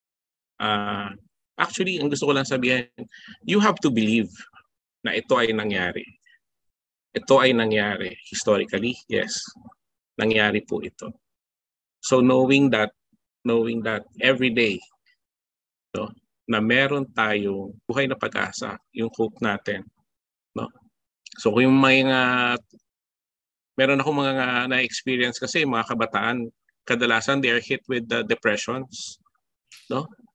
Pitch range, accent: 110-140 Hz, native